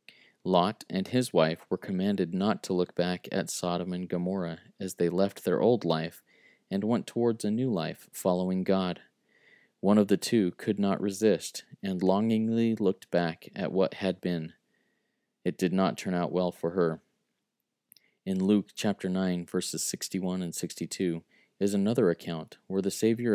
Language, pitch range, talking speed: English, 90-105 Hz, 165 wpm